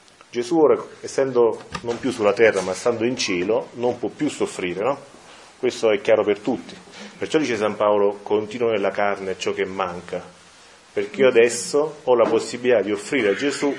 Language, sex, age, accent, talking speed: Italian, male, 30-49, native, 180 wpm